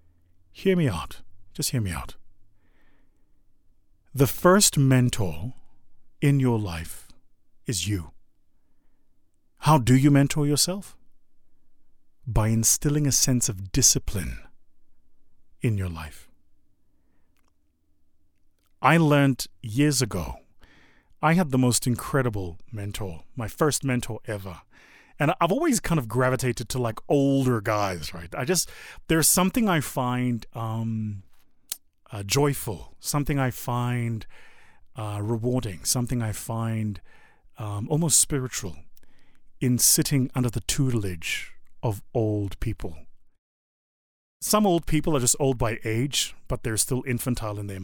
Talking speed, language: 120 wpm, English